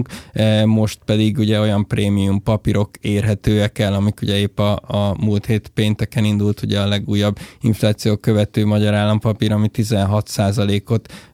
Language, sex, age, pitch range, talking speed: Hungarian, male, 20-39, 105-115 Hz, 140 wpm